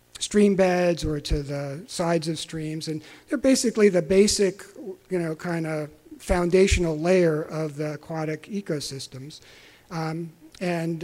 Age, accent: 50-69, American